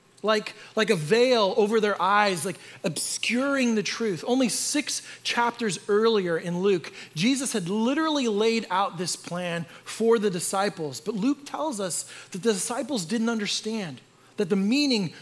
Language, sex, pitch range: English, male, 175-240 Hz